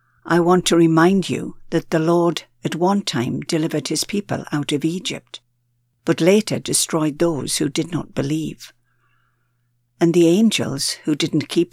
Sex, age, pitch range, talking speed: female, 60-79, 135-175 Hz, 160 wpm